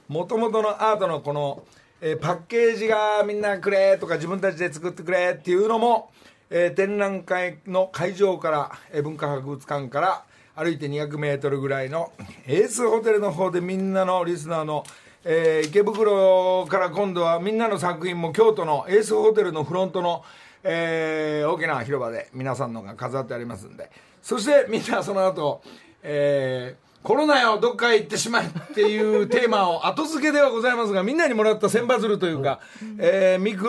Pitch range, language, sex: 145-215 Hz, Japanese, male